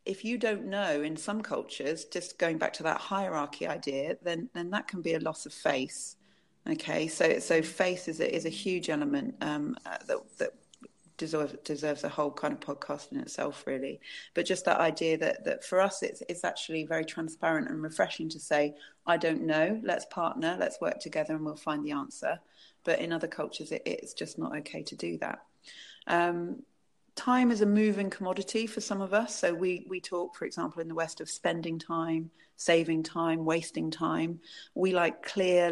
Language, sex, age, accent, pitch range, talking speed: English, female, 30-49, British, 160-210 Hz, 200 wpm